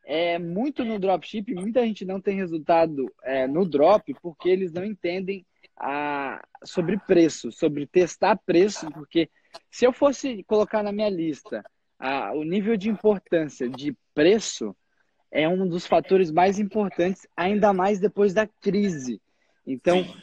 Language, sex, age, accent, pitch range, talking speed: Portuguese, male, 20-39, Brazilian, 155-205 Hz, 145 wpm